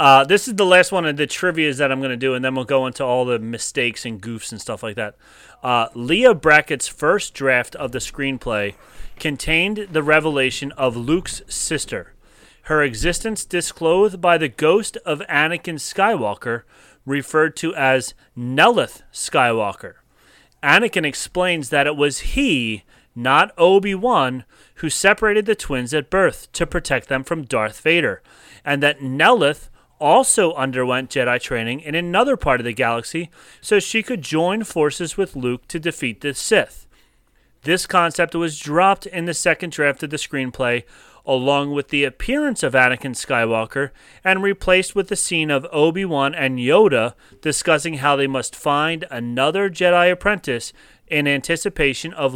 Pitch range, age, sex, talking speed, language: 130-175 Hz, 30-49, male, 160 wpm, English